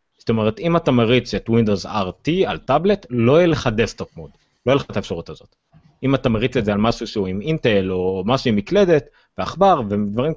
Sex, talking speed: male, 215 wpm